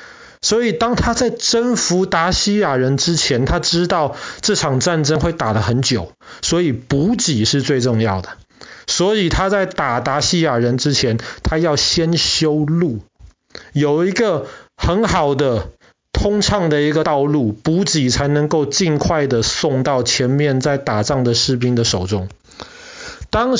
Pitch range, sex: 130-185 Hz, male